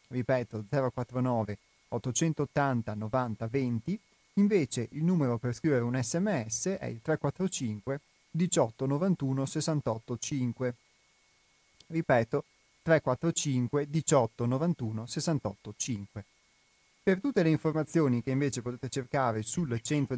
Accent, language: native, Italian